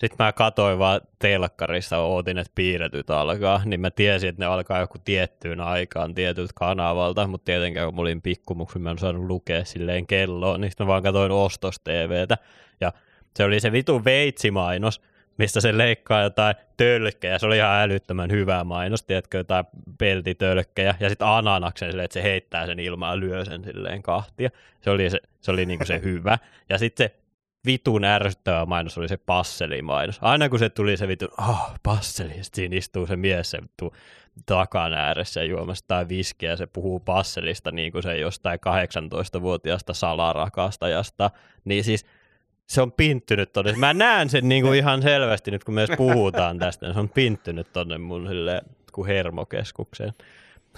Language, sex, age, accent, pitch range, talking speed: Finnish, male, 20-39, native, 90-105 Hz, 165 wpm